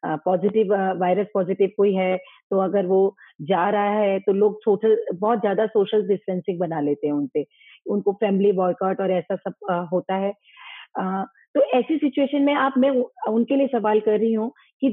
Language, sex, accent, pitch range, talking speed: Hindi, female, native, 200-260 Hz, 180 wpm